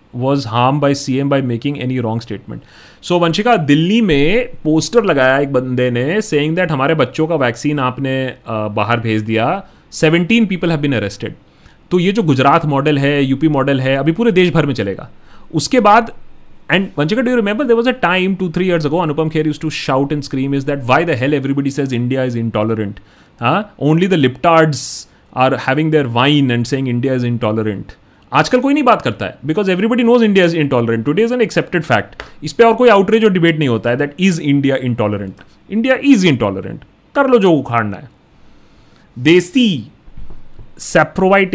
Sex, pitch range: male, 120-170 Hz